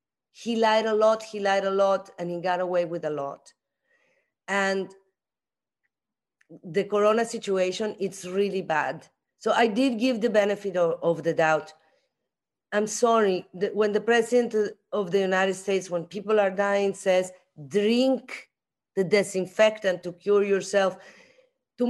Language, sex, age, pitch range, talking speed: English, female, 40-59, 195-260 Hz, 145 wpm